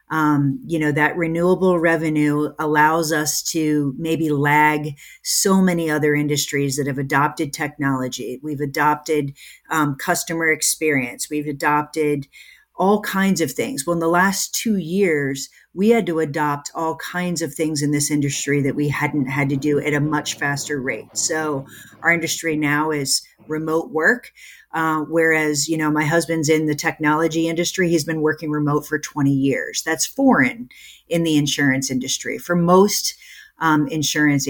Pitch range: 145-170 Hz